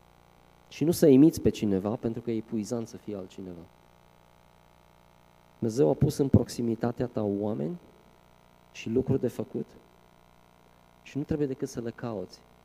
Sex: male